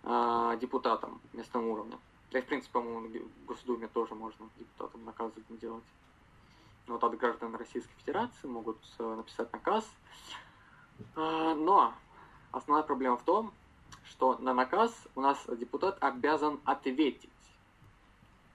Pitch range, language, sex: 115-150 Hz, Russian, male